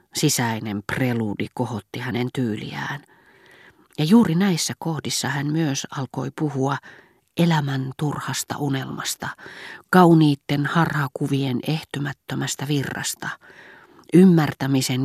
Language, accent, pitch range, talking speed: Finnish, native, 125-155 Hz, 85 wpm